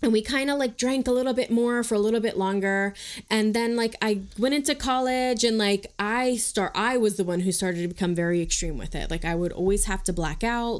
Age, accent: 20-39, American